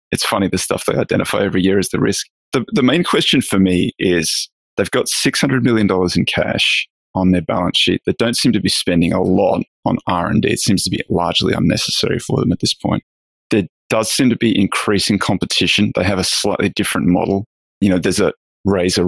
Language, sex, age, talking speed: English, male, 20-39, 210 wpm